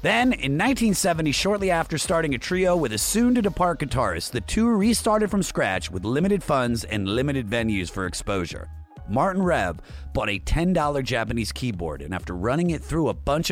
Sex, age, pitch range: male, 30-49, 100-165 Hz